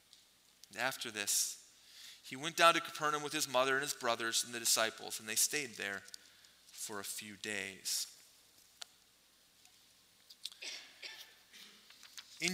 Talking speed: 125 wpm